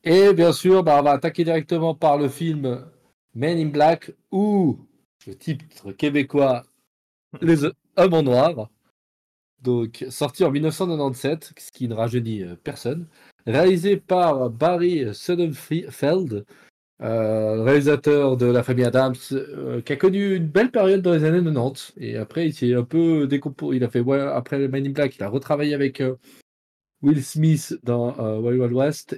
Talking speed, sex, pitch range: 150 wpm, male, 120-155 Hz